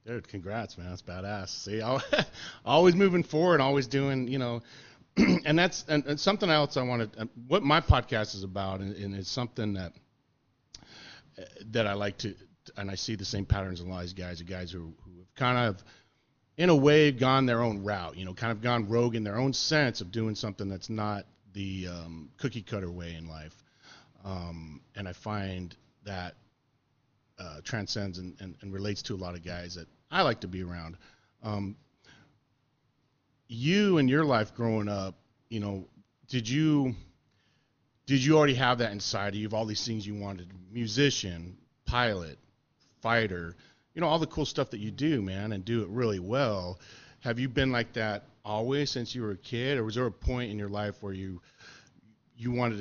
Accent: American